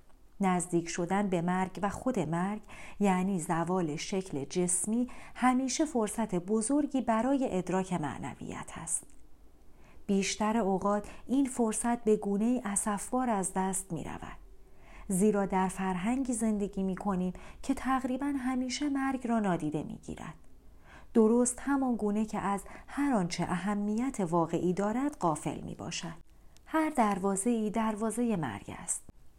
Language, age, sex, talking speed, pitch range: Persian, 40-59, female, 125 wpm, 180-235 Hz